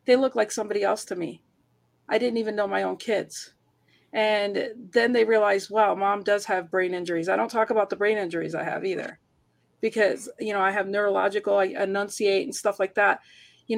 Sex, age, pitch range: female, 40-59, 210-280 Hz